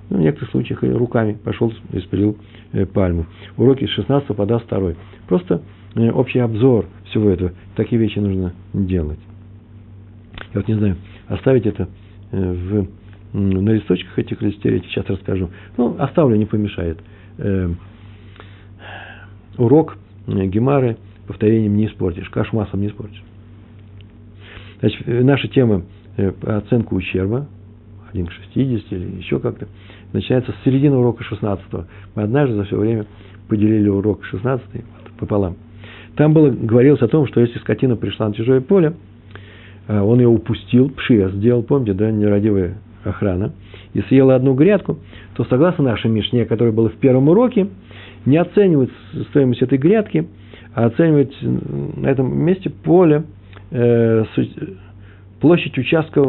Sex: male